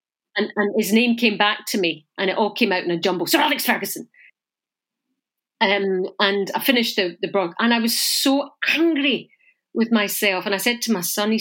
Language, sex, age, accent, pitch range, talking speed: English, female, 40-59, British, 200-260 Hz, 215 wpm